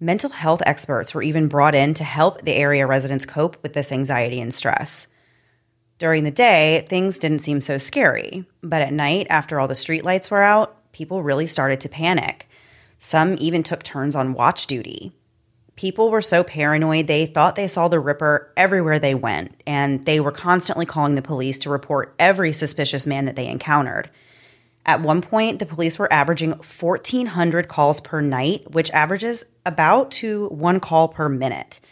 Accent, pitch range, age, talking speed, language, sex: American, 140-170 Hz, 30-49, 175 wpm, English, female